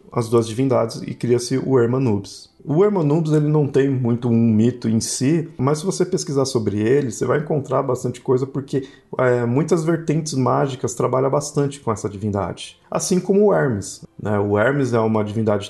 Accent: Brazilian